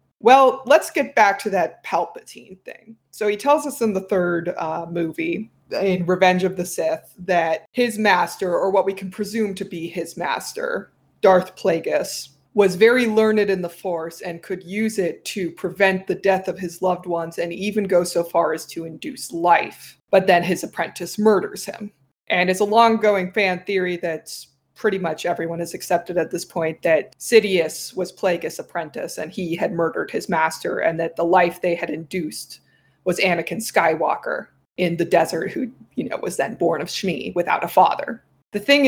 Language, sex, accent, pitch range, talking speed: English, female, American, 170-210 Hz, 185 wpm